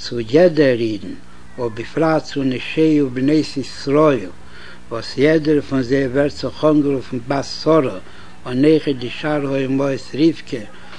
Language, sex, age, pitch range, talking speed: Hebrew, male, 60-79, 130-155 Hz, 215 wpm